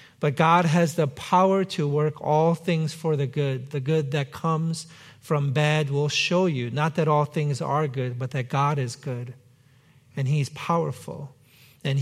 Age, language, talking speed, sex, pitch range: 50-69, English, 180 wpm, male, 135-155 Hz